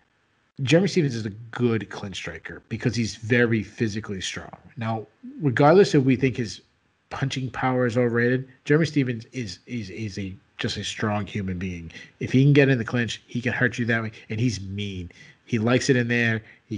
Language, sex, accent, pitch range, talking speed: English, male, American, 105-130 Hz, 195 wpm